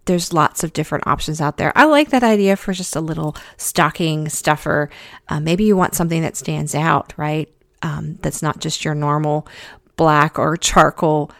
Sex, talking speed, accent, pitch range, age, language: female, 185 wpm, American, 145-175 Hz, 40-59, English